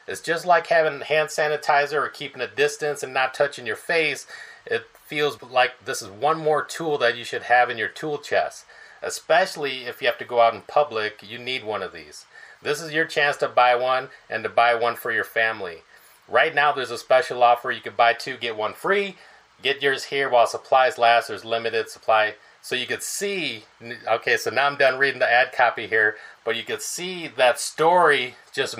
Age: 30-49